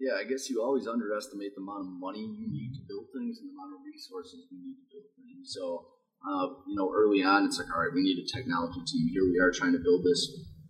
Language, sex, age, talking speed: English, male, 30-49, 265 wpm